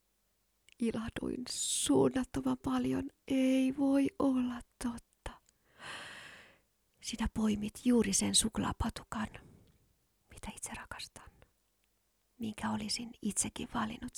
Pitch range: 215-260 Hz